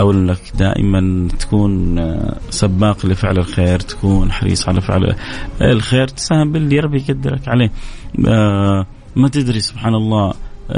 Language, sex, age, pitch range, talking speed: Arabic, male, 30-49, 100-125 Hz, 110 wpm